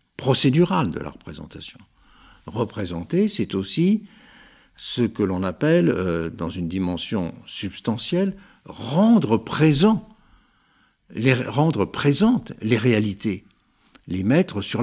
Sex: male